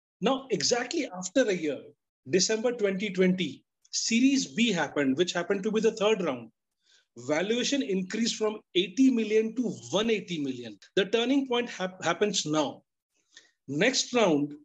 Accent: Indian